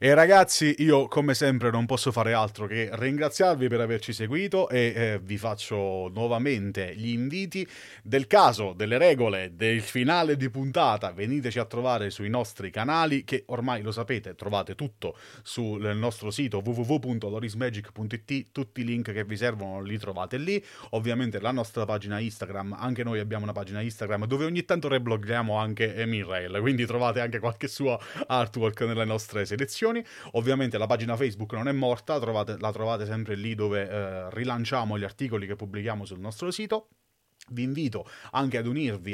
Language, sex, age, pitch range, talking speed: Italian, male, 30-49, 105-135 Hz, 160 wpm